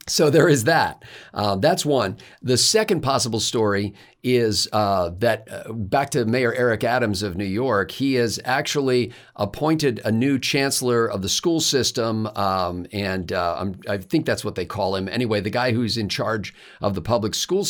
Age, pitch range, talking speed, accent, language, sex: 50-69, 105-130 Hz, 185 wpm, American, English, male